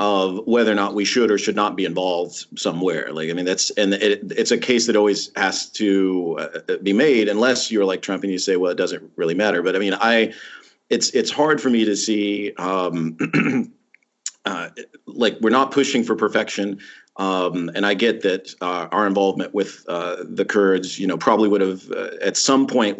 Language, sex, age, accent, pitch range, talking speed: English, male, 40-59, American, 95-110 Hz, 210 wpm